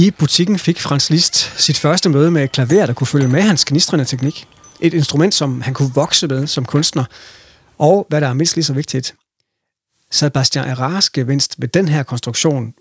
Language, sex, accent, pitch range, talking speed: Danish, male, native, 130-165 Hz, 195 wpm